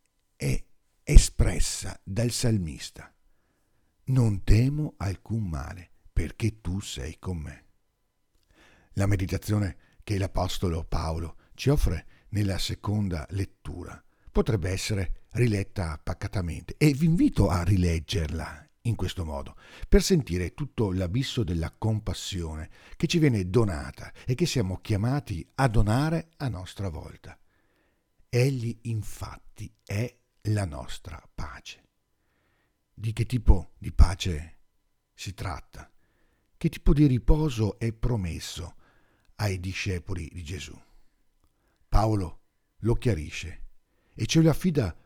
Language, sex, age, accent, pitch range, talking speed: Italian, male, 50-69, native, 85-115 Hz, 110 wpm